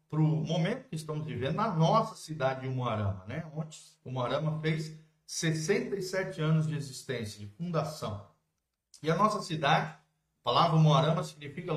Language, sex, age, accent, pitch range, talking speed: Portuguese, male, 50-69, Brazilian, 135-180 Hz, 150 wpm